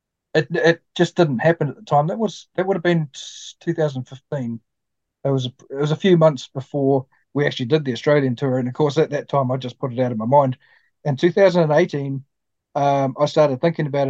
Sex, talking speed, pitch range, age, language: male, 240 wpm, 125-150 Hz, 40-59, English